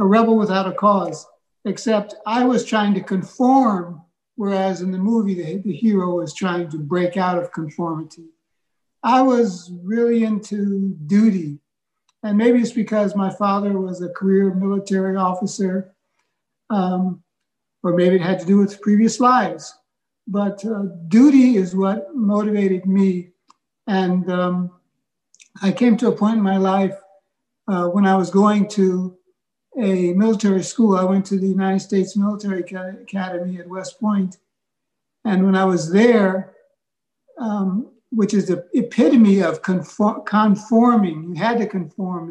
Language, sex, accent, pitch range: English, male, American, 185-215 Hz